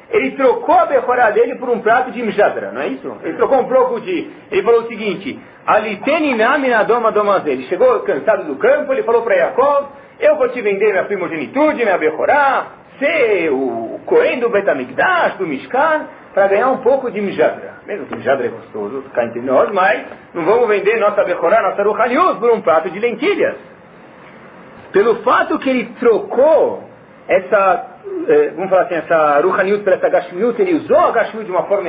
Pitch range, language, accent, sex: 200-330 Hz, Portuguese, Brazilian, male